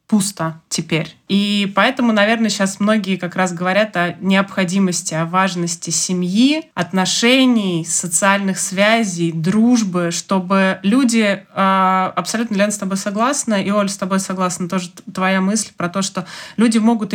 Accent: native